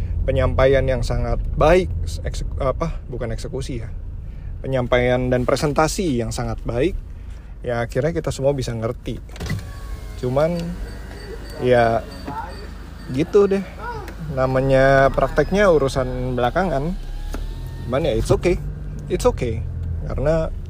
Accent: native